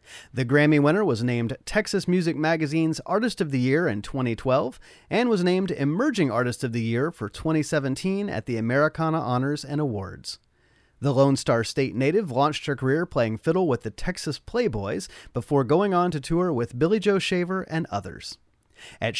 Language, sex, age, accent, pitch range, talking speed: English, male, 30-49, American, 125-175 Hz, 175 wpm